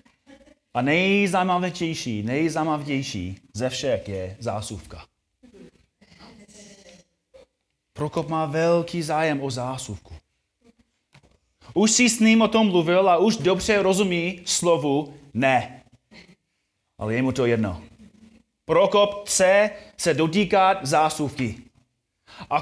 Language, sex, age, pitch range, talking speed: Czech, male, 30-49, 135-210 Hz, 100 wpm